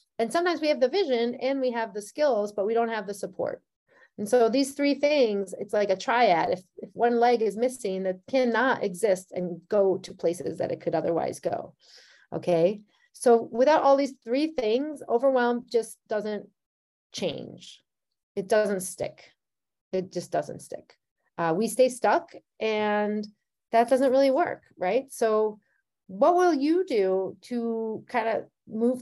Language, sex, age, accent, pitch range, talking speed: English, female, 30-49, American, 200-265 Hz, 170 wpm